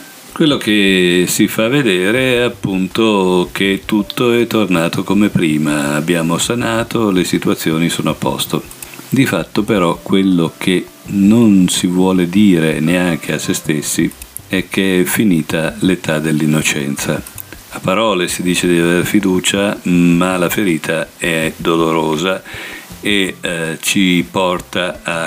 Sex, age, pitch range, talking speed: male, 50-69, 85-100 Hz, 135 wpm